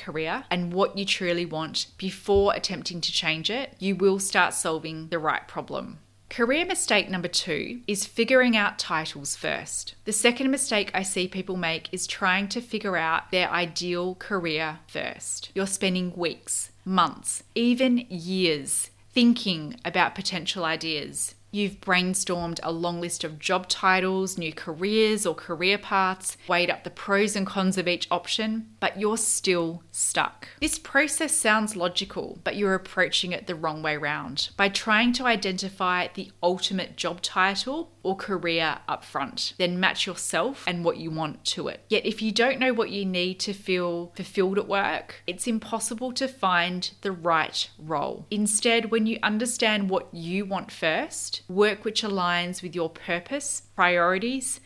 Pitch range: 175-210 Hz